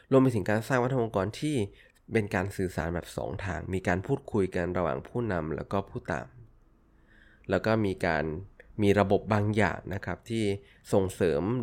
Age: 20-39